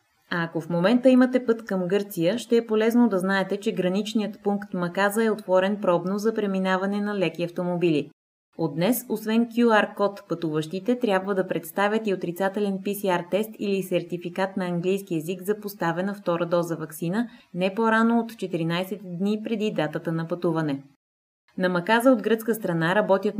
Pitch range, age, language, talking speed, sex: 170-210 Hz, 20-39, Bulgarian, 155 wpm, female